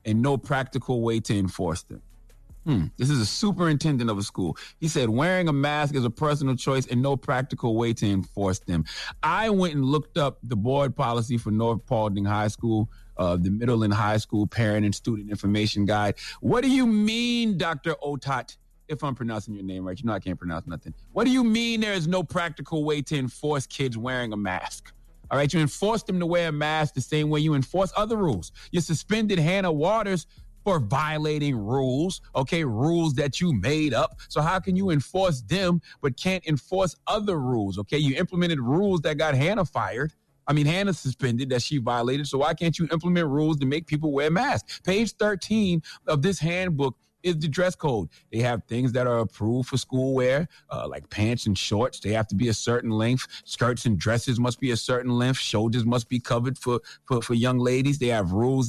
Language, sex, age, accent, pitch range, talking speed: English, male, 30-49, American, 115-160 Hz, 210 wpm